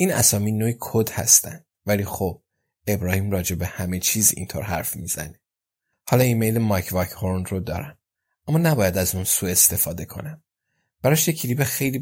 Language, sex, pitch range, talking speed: Persian, male, 95-120 Hz, 155 wpm